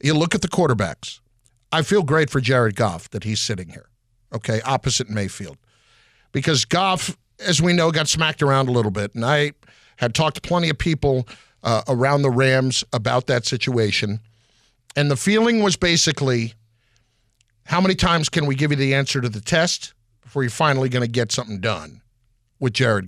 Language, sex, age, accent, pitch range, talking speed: English, male, 50-69, American, 115-160 Hz, 185 wpm